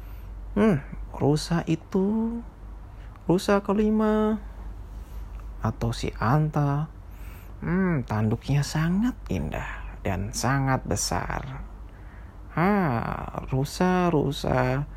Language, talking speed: Indonesian, 70 wpm